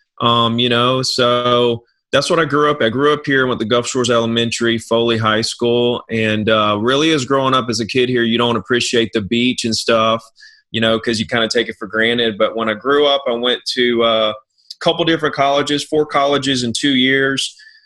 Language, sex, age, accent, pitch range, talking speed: English, male, 30-49, American, 115-135 Hz, 220 wpm